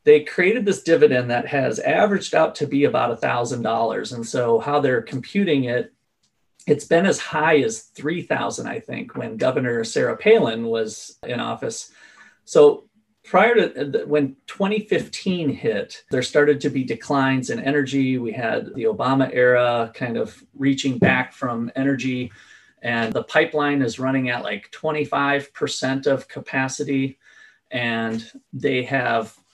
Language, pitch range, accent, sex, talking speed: English, 120-165 Hz, American, male, 140 wpm